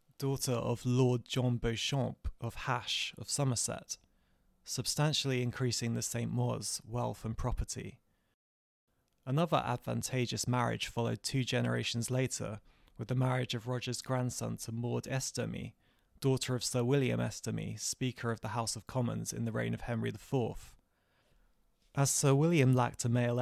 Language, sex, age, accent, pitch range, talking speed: English, male, 20-39, British, 115-130 Hz, 145 wpm